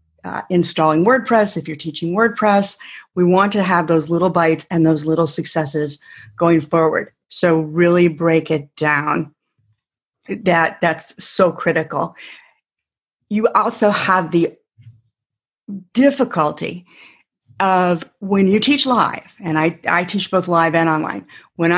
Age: 40-59